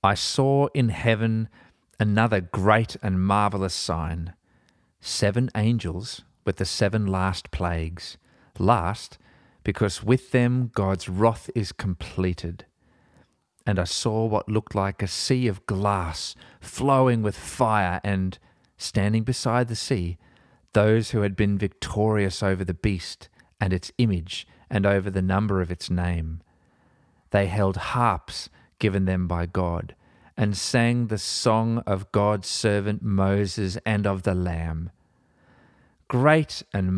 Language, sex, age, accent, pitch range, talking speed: English, male, 40-59, Australian, 95-115 Hz, 130 wpm